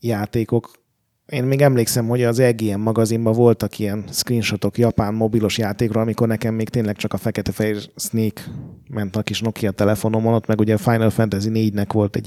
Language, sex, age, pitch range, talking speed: Hungarian, male, 30-49, 110-135 Hz, 175 wpm